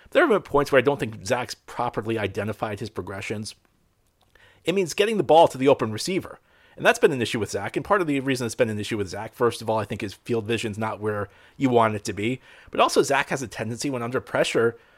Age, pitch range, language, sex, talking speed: 40-59, 115-170 Hz, English, male, 255 wpm